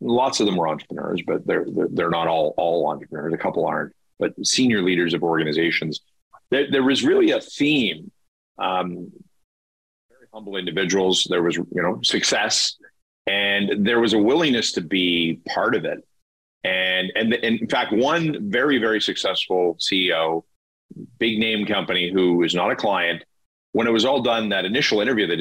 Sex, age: male, 40-59